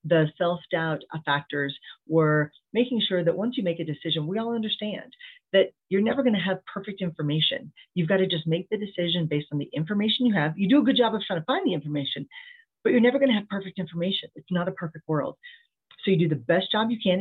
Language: English